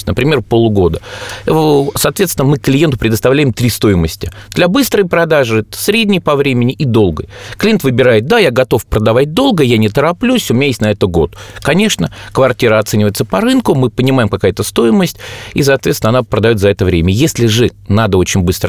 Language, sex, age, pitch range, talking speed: Russian, male, 30-49, 105-135 Hz, 175 wpm